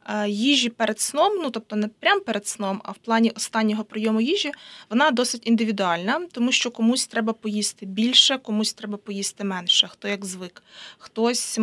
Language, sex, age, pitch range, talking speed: Ukrainian, female, 20-39, 210-245 Hz, 165 wpm